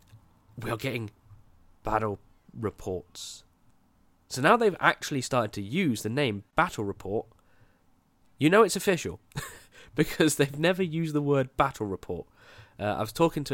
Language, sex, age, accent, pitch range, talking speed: English, male, 20-39, British, 105-140 Hz, 140 wpm